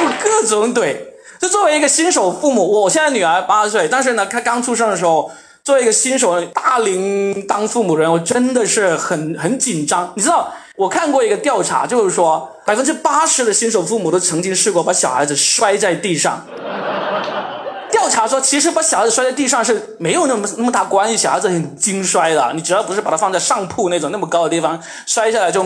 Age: 20-39